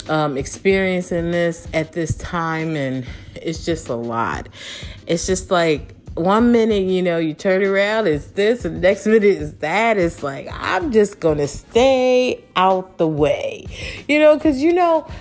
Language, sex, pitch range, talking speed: English, female, 150-230 Hz, 165 wpm